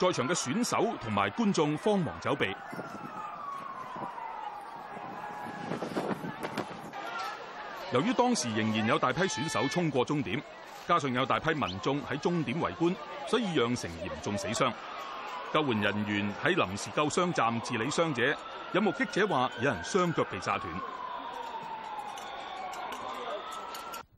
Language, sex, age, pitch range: Chinese, male, 30-49, 120-195 Hz